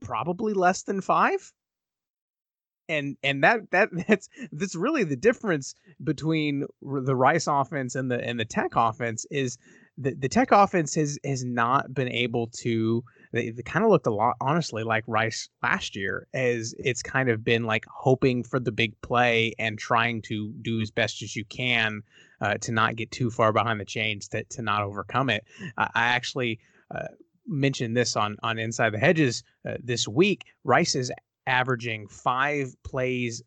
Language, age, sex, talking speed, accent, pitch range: English, 30-49, male, 175 wpm, American, 115-140 Hz